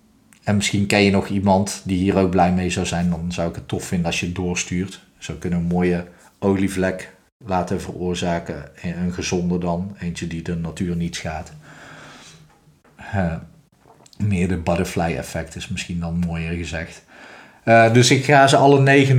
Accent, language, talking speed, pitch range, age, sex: Dutch, Dutch, 180 wpm, 90-110 Hz, 40-59, male